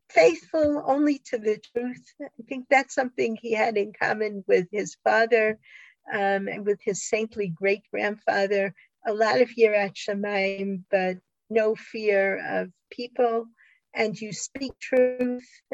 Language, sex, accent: English, female, American